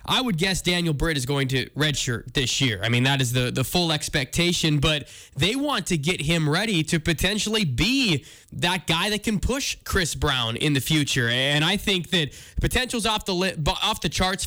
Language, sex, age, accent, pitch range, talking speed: English, male, 20-39, American, 150-185 Hz, 205 wpm